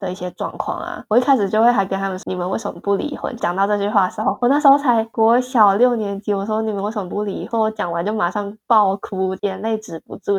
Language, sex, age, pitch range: Chinese, female, 10-29, 185-230 Hz